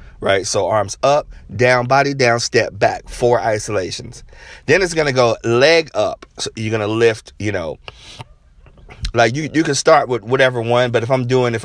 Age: 30-49